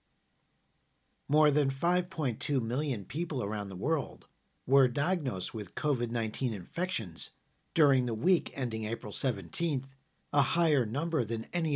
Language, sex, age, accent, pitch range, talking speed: English, male, 50-69, American, 120-165 Hz, 120 wpm